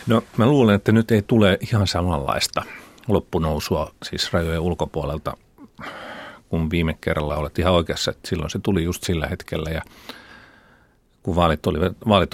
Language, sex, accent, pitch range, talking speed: Finnish, male, native, 85-100 Hz, 135 wpm